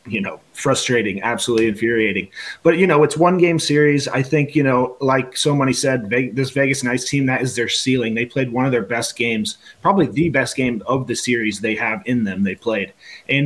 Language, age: English, 30-49